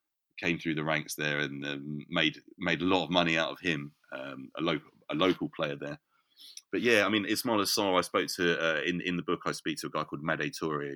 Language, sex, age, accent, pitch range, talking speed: English, male, 30-49, British, 75-90 Hz, 250 wpm